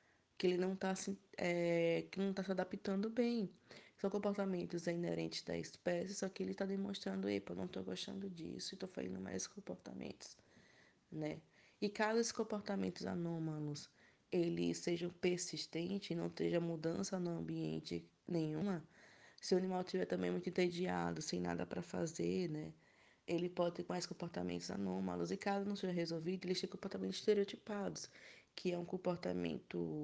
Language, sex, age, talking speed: Portuguese, female, 20-39, 155 wpm